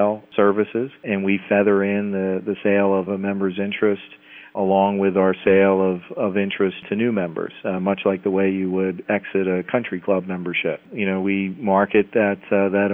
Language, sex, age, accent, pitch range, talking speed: English, male, 40-59, American, 95-105 Hz, 190 wpm